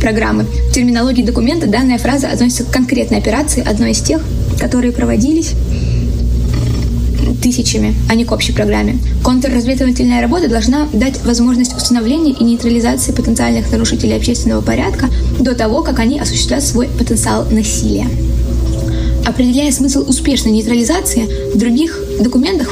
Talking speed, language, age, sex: 125 wpm, Russian, 20-39, female